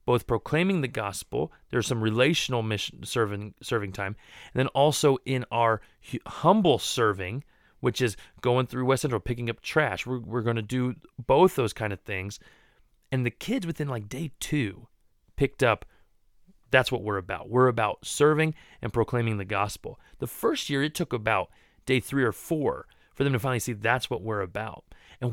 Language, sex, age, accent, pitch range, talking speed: English, male, 30-49, American, 115-150 Hz, 180 wpm